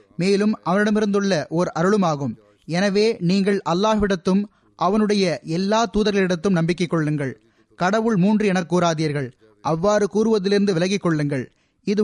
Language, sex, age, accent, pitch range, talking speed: Tamil, male, 20-39, native, 160-205 Hz, 105 wpm